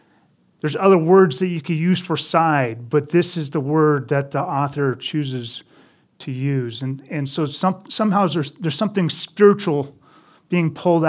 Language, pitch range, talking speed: English, 135-165 Hz, 170 wpm